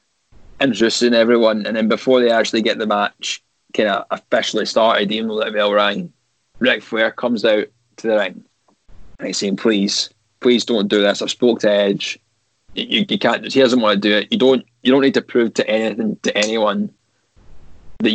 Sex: male